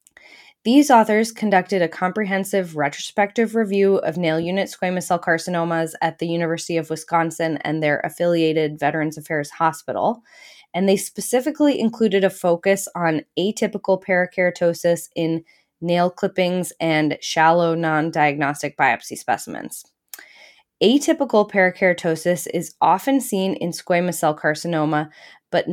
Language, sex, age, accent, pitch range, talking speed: English, female, 10-29, American, 160-195 Hz, 120 wpm